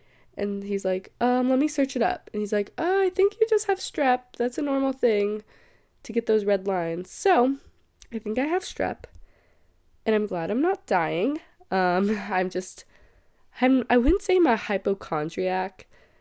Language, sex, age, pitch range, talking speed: English, female, 20-39, 165-230 Hz, 180 wpm